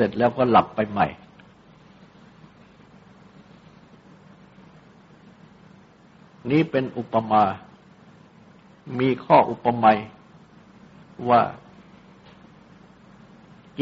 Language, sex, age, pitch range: Thai, male, 60-79, 130-200 Hz